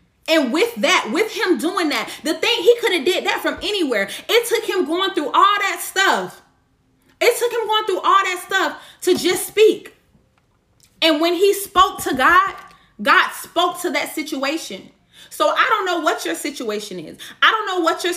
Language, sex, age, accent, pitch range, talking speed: English, female, 30-49, American, 295-380 Hz, 195 wpm